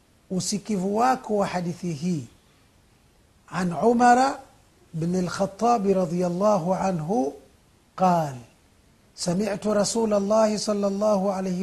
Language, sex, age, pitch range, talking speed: Swahili, male, 50-69, 160-215 Hz, 85 wpm